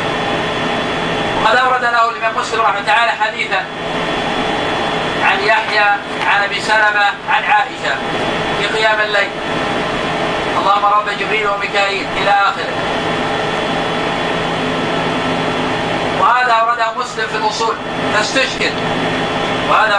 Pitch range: 200-230 Hz